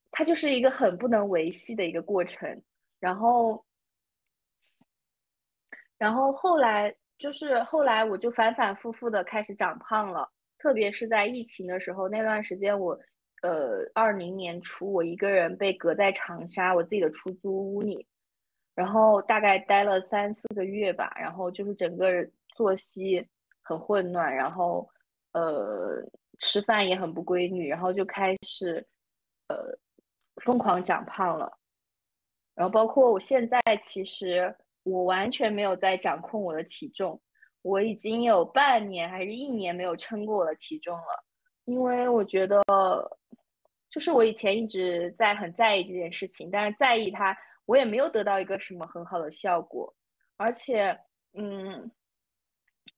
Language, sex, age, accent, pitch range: Chinese, female, 20-39, native, 185-235 Hz